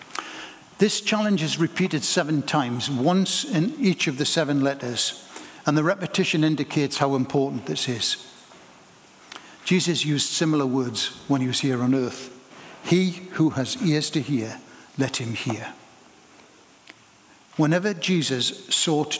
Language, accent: English, British